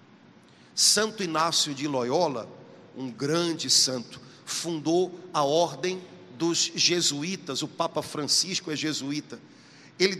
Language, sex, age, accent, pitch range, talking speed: Portuguese, male, 50-69, Brazilian, 175-225 Hz, 105 wpm